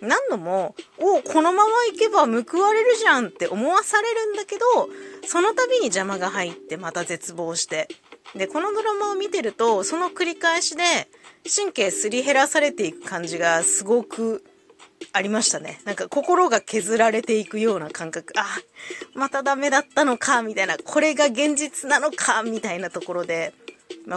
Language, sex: Japanese, female